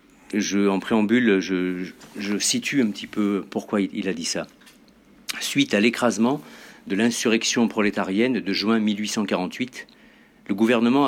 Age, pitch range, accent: 50-69, 105-135 Hz, French